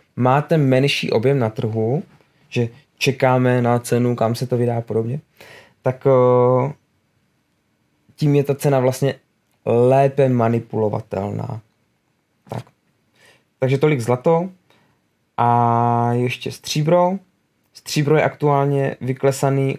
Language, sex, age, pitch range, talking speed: Czech, male, 20-39, 120-140 Hz, 105 wpm